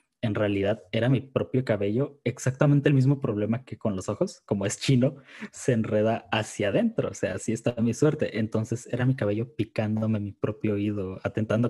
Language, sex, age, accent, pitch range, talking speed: English, male, 20-39, Mexican, 105-135 Hz, 185 wpm